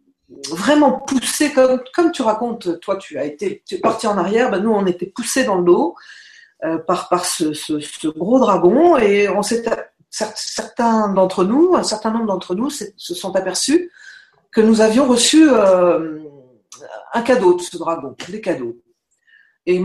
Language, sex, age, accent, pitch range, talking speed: French, female, 50-69, French, 180-260 Hz, 165 wpm